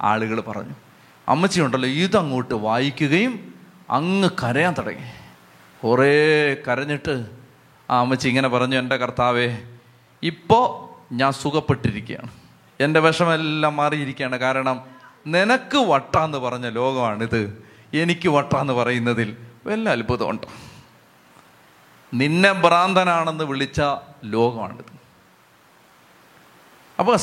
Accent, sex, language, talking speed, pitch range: native, male, Malayalam, 85 wpm, 125-190 Hz